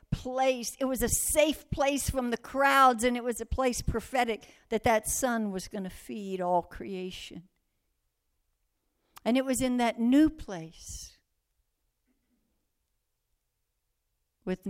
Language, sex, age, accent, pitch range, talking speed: English, female, 60-79, American, 155-240 Hz, 130 wpm